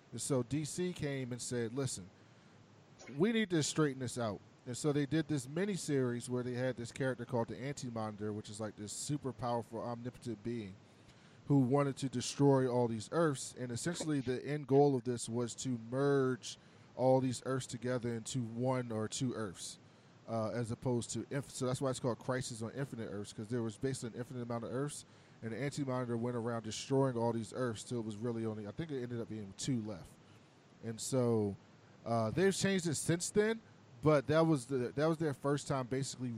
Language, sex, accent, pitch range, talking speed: English, male, American, 115-140 Hz, 205 wpm